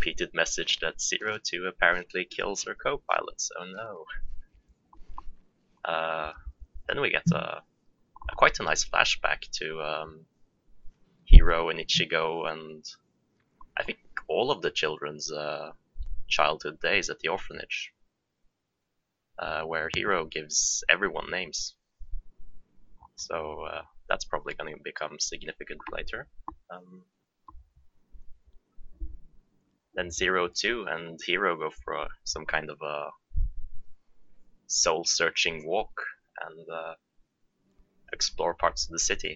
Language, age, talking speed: English, 20-39, 120 wpm